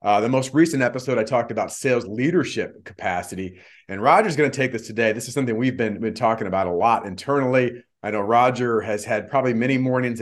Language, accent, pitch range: English, American, 115-135 Hz